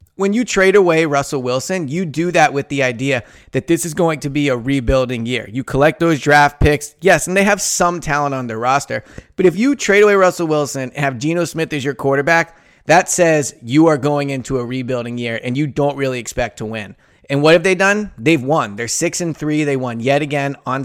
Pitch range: 125-165 Hz